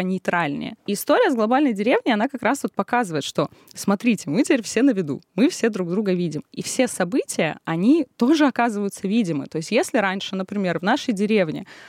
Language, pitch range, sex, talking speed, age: Russian, 180-250 Hz, female, 190 wpm, 20-39